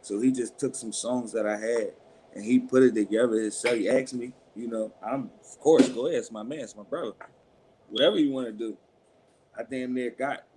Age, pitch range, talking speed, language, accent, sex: 30-49, 110-145 Hz, 220 wpm, English, American, male